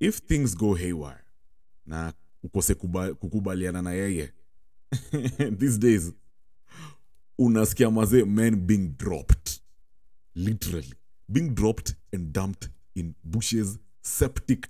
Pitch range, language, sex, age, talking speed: 85-110 Hz, English, male, 30-49, 95 wpm